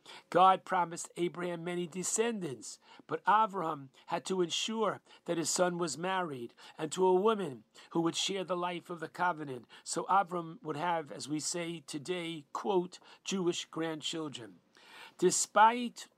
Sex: male